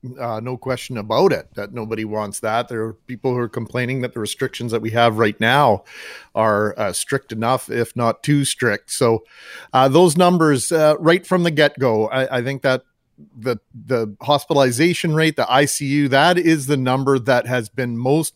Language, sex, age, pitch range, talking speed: English, male, 40-59, 125-150 Hz, 190 wpm